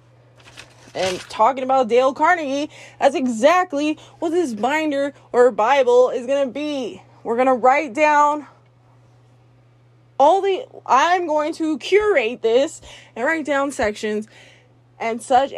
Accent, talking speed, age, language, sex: American, 130 wpm, 20-39, English, female